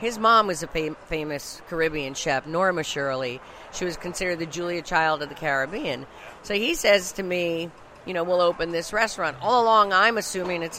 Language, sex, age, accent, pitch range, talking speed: English, female, 50-69, American, 150-195 Hz, 190 wpm